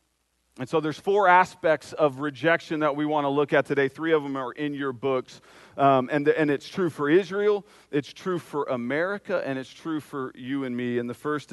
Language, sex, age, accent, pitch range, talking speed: English, male, 40-59, American, 120-145 Hz, 220 wpm